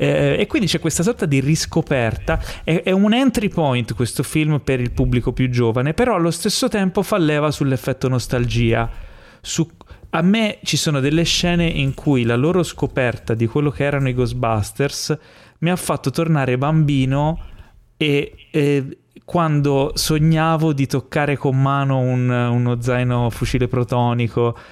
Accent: native